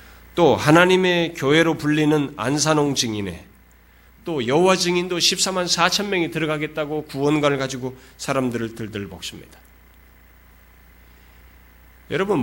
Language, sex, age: Korean, male, 40-59